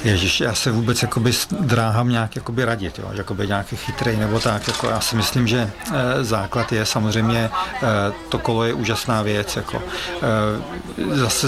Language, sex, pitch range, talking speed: Czech, male, 110-120 Hz, 165 wpm